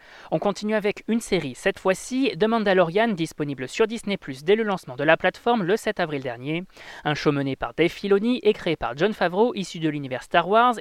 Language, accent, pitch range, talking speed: French, French, 150-215 Hz, 210 wpm